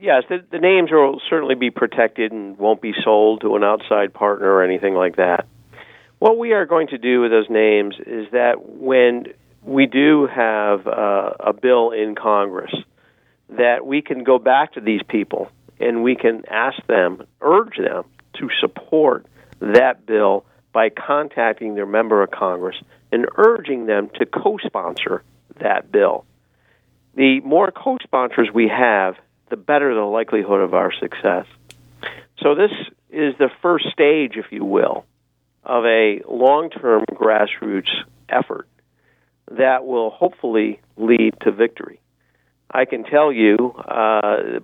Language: English